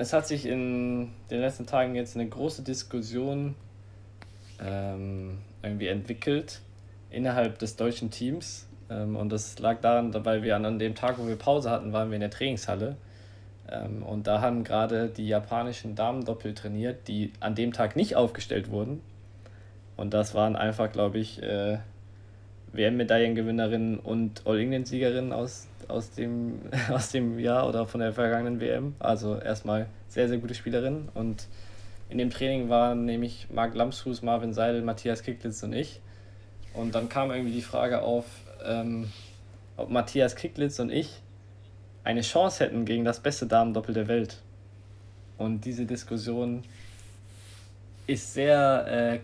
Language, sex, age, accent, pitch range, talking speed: German, male, 20-39, German, 105-120 Hz, 150 wpm